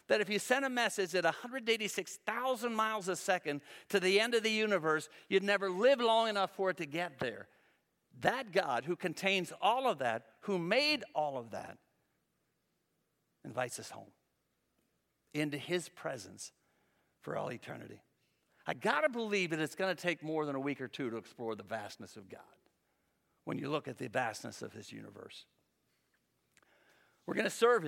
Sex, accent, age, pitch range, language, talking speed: male, American, 60-79, 160-205 Hz, English, 175 wpm